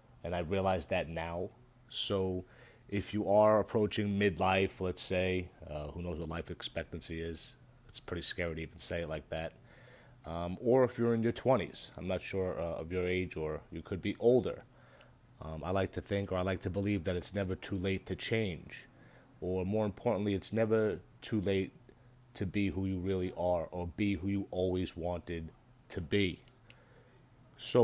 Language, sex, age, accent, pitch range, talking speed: English, male, 30-49, American, 90-120 Hz, 190 wpm